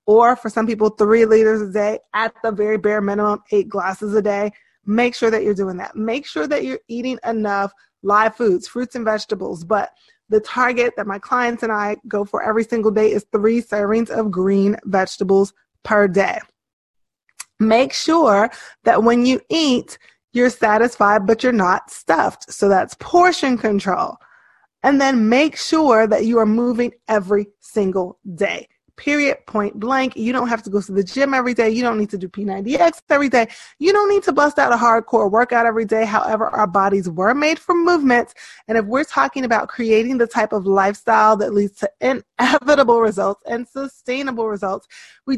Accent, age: American, 20-39